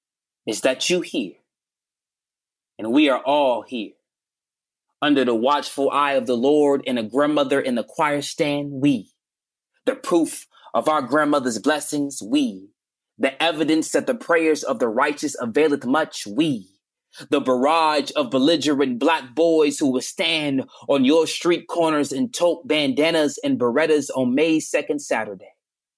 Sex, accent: male, American